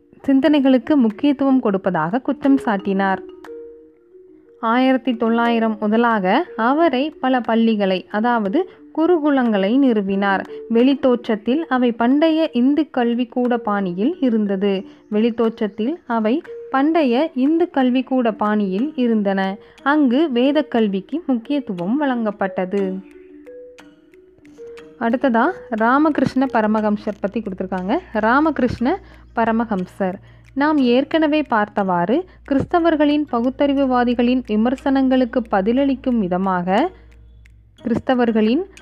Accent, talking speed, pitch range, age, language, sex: native, 75 wpm, 215-285 Hz, 20-39, Tamil, female